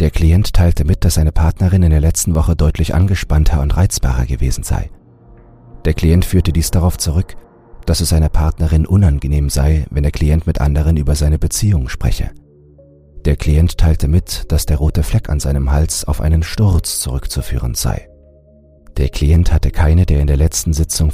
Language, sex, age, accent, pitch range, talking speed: German, male, 40-59, German, 75-90 Hz, 180 wpm